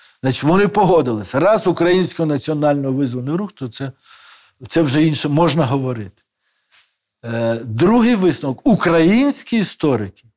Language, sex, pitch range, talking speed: Ukrainian, male, 130-180 Hz, 105 wpm